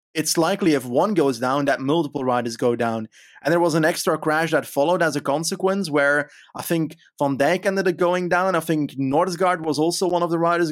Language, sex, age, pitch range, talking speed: English, male, 20-39, 130-155 Hz, 225 wpm